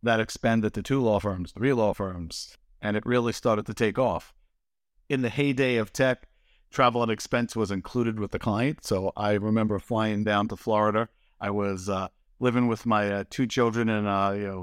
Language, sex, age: English, male, 50-69